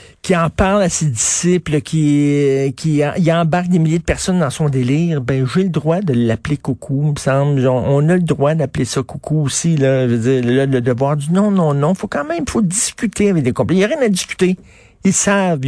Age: 50-69